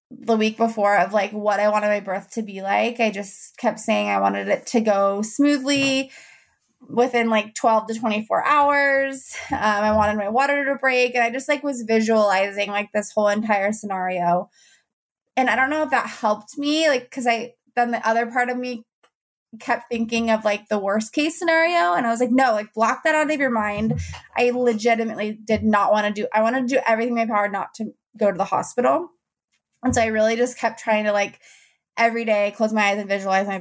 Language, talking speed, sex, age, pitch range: English, 220 wpm, female, 20-39, 210-245 Hz